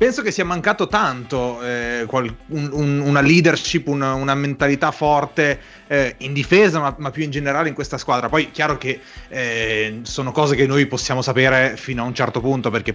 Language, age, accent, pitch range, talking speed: Italian, 30-49, native, 115-155 Hz, 195 wpm